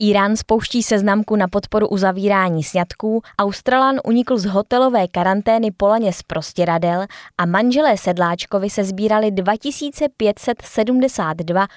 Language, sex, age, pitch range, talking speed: Czech, female, 20-39, 175-225 Hz, 105 wpm